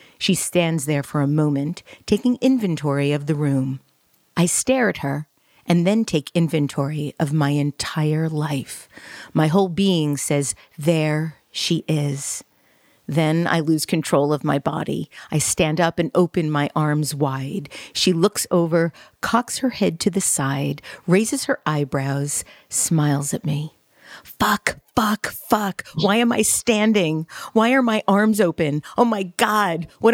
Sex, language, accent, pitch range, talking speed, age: female, English, American, 145-195 Hz, 150 wpm, 40-59